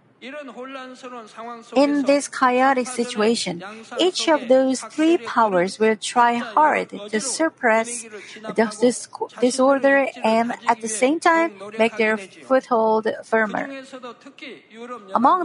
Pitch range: 220-270 Hz